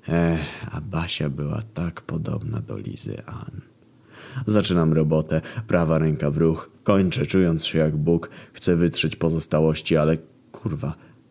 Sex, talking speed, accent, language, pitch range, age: male, 135 wpm, native, Polish, 80-110 Hz, 20-39